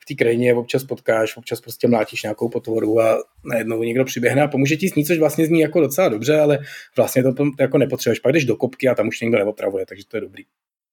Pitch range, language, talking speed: 125-150 Hz, Czech, 235 wpm